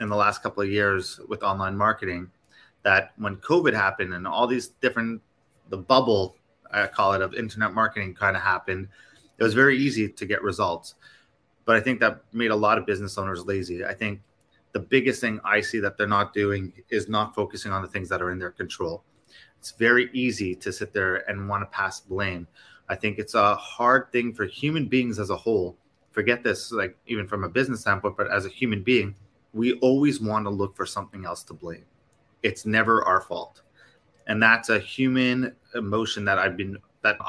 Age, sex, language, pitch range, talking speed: 20-39, male, English, 100-120 Hz, 205 wpm